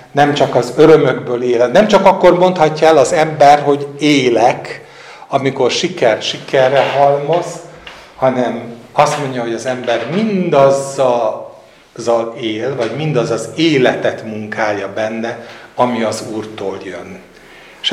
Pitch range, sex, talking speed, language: 115-155 Hz, male, 125 wpm, Hungarian